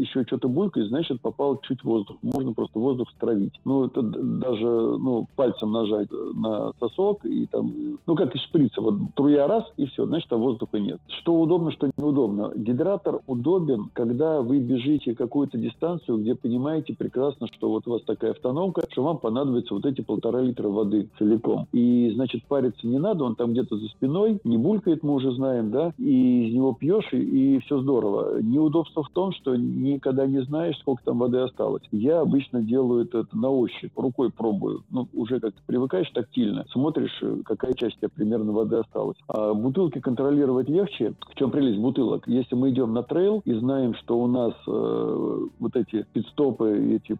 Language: Russian